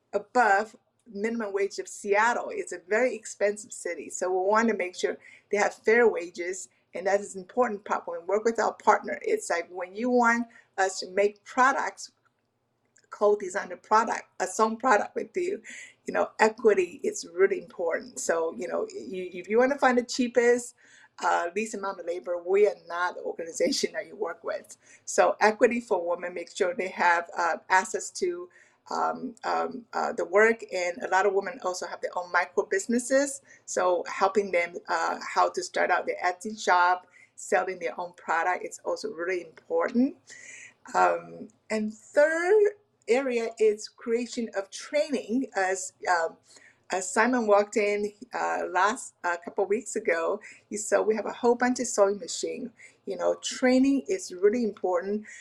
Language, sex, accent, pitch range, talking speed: English, female, American, 195-275 Hz, 180 wpm